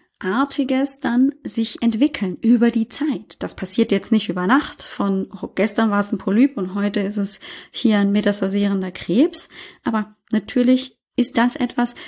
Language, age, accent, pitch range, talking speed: German, 30-49, German, 205-250 Hz, 160 wpm